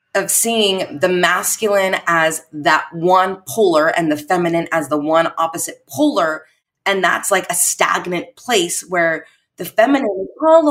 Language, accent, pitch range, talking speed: English, American, 160-230 Hz, 150 wpm